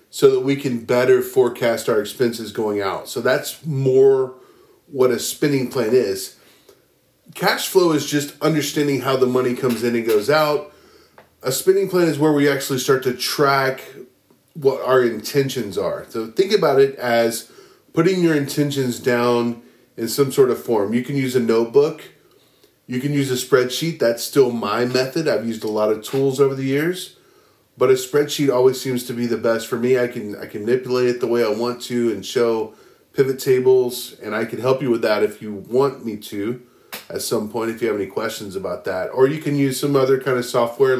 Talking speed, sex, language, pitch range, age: 205 wpm, male, English, 120-150 Hz, 30-49